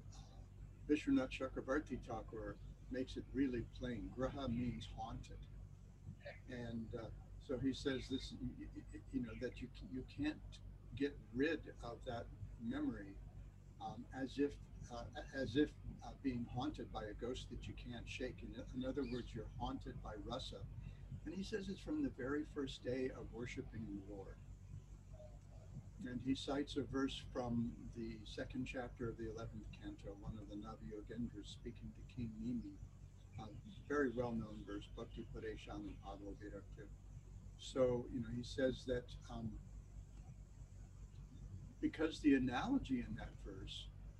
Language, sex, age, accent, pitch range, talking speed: English, male, 60-79, American, 105-130 Hz, 145 wpm